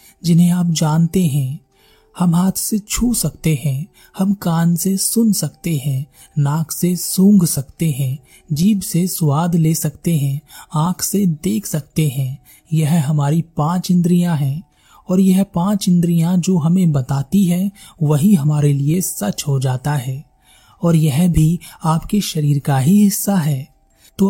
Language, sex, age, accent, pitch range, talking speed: Hindi, male, 30-49, native, 150-190 Hz, 155 wpm